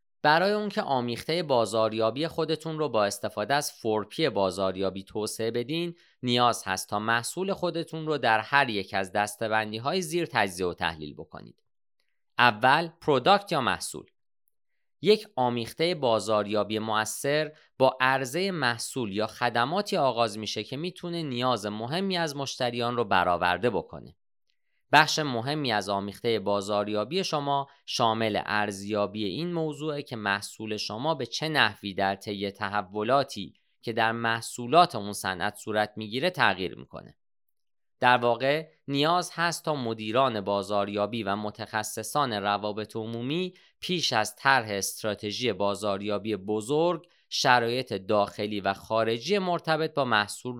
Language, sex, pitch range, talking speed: Persian, male, 105-150 Hz, 125 wpm